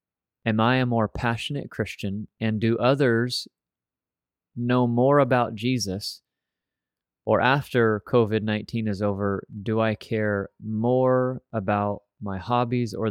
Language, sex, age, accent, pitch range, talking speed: English, male, 30-49, American, 100-125 Hz, 120 wpm